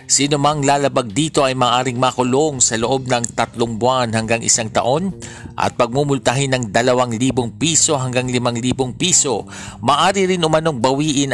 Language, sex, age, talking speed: Filipino, male, 50-69, 150 wpm